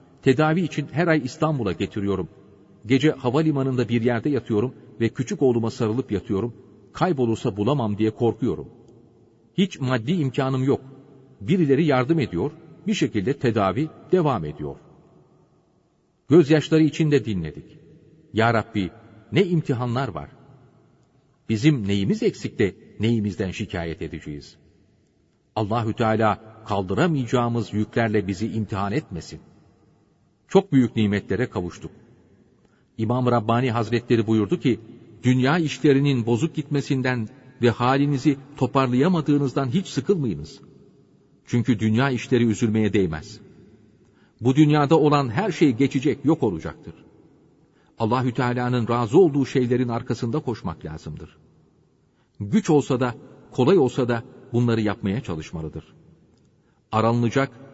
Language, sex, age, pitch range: Turkish, male, 40-59, 110-140 Hz